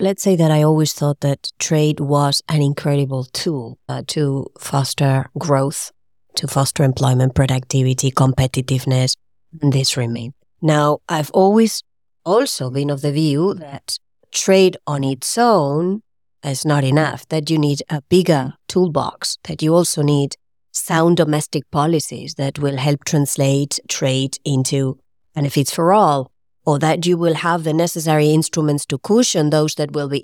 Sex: female